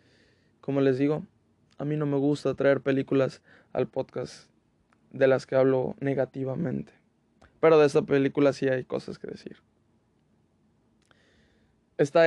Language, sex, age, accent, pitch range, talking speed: Spanish, male, 20-39, Mexican, 130-145 Hz, 130 wpm